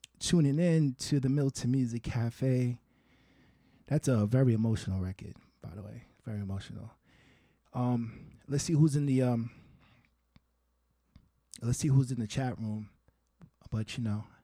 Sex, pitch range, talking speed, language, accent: male, 110-145 Hz, 140 wpm, English, American